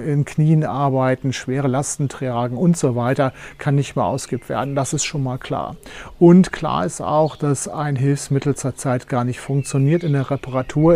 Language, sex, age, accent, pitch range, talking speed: German, male, 40-59, German, 125-155 Hz, 180 wpm